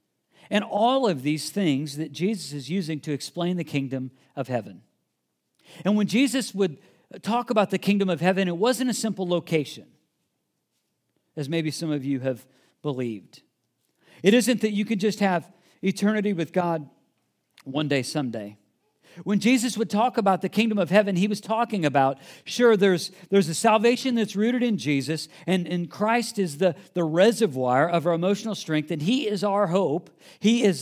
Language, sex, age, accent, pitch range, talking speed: English, male, 50-69, American, 165-215 Hz, 175 wpm